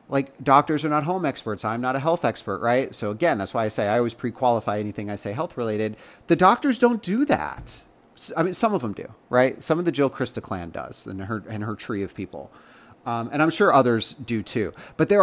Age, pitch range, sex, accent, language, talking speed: 30-49, 115-180 Hz, male, American, English, 235 wpm